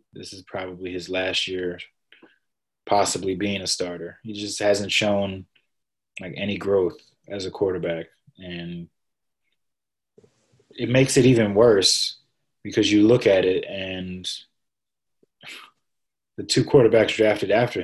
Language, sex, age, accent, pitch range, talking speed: English, male, 20-39, American, 90-120 Hz, 125 wpm